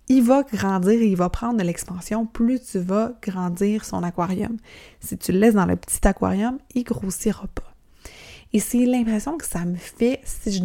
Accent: Canadian